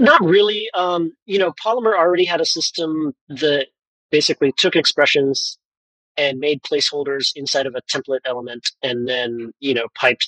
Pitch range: 130-165 Hz